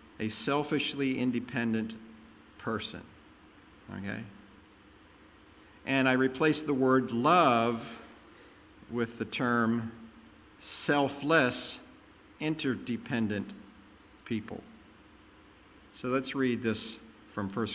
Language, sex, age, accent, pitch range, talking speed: English, male, 50-69, American, 105-135 Hz, 80 wpm